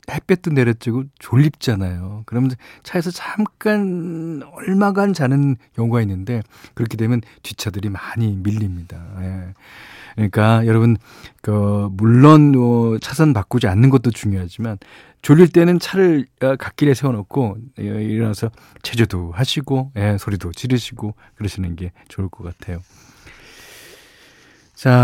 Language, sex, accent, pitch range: Korean, male, native, 105-150 Hz